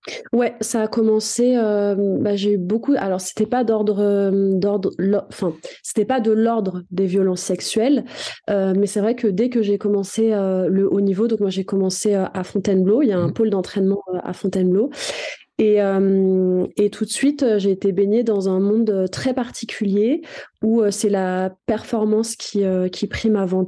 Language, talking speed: French, 195 wpm